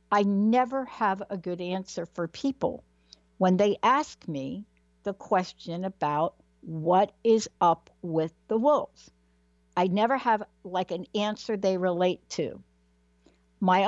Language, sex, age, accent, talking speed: English, female, 60-79, American, 135 wpm